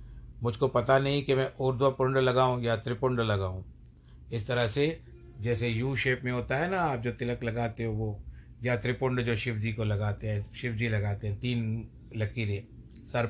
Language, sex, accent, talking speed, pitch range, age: Hindi, male, native, 185 wpm, 110-125 Hz, 50-69